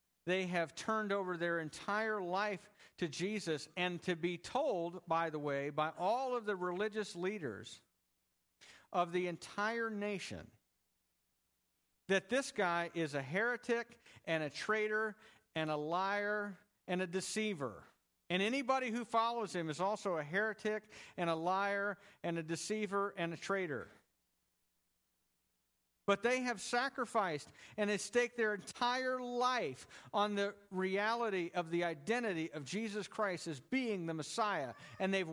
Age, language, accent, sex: 50-69, English, American, male